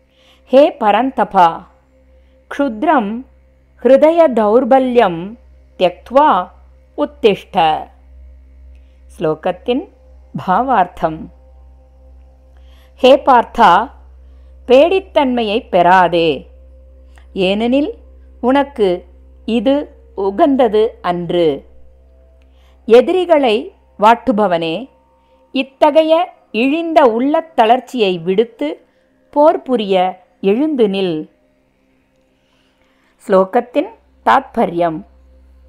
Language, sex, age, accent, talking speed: Tamil, female, 50-69, native, 45 wpm